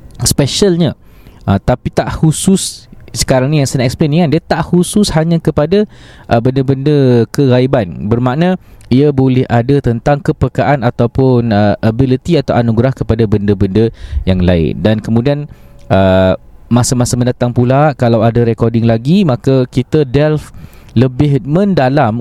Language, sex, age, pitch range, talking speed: Malay, male, 20-39, 110-150 Hz, 125 wpm